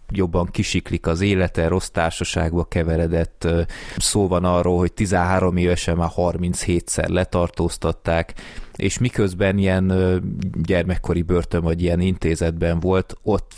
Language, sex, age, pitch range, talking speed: Hungarian, male, 20-39, 85-95 Hz, 115 wpm